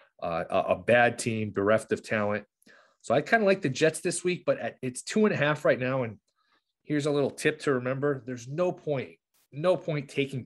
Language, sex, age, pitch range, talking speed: English, male, 30-49, 105-135 Hz, 220 wpm